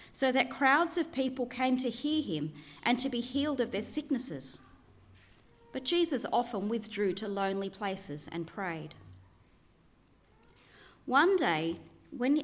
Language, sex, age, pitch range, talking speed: English, female, 30-49, 190-285 Hz, 135 wpm